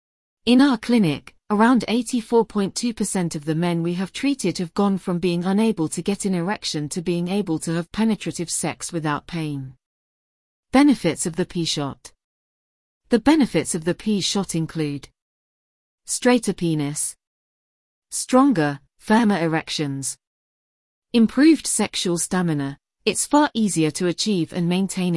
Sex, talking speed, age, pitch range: female, 130 wpm, 40-59, 155-215 Hz